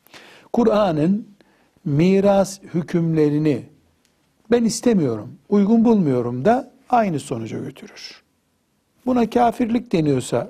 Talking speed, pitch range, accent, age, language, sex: 80 wpm, 140-215 Hz, native, 60-79, Turkish, male